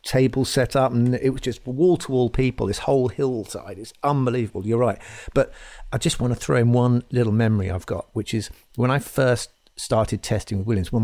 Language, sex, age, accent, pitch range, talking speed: English, male, 50-69, British, 100-125 Hz, 215 wpm